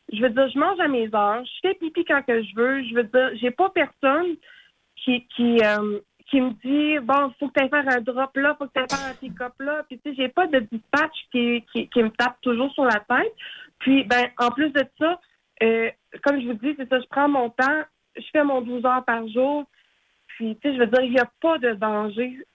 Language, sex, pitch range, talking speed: French, female, 235-290 Hz, 255 wpm